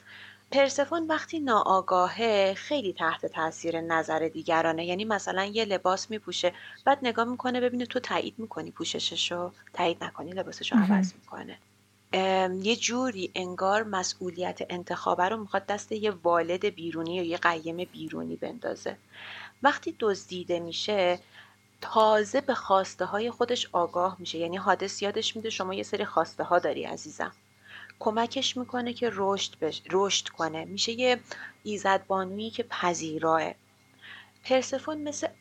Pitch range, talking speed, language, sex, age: 175-225 Hz, 125 wpm, Persian, female, 30-49